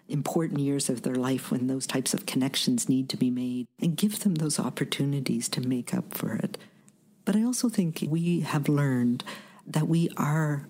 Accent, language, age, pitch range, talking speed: American, English, 50-69, 140-205 Hz, 190 wpm